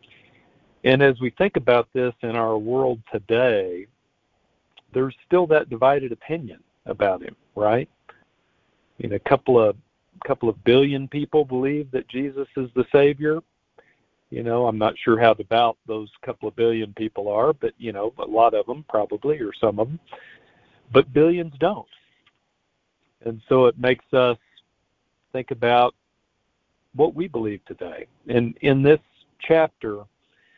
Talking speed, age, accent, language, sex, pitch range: 150 wpm, 50-69, American, English, male, 110-140 Hz